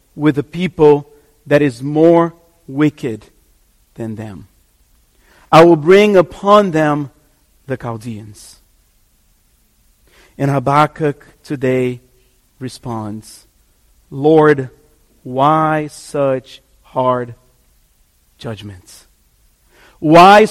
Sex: male